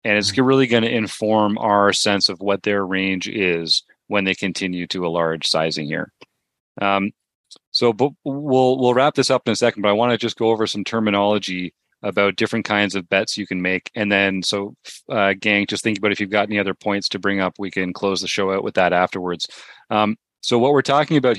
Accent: American